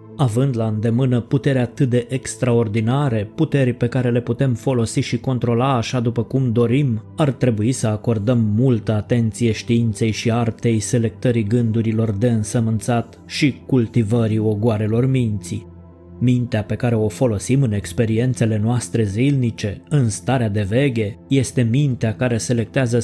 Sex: male